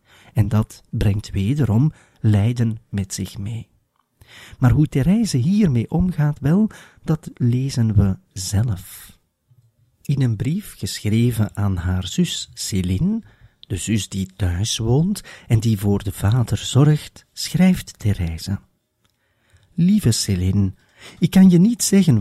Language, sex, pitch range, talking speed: Dutch, male, 100-155 Hz, 125 wpm